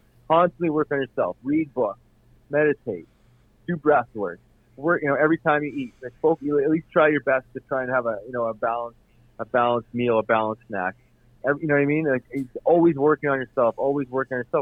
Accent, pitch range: American, 115-135 Hz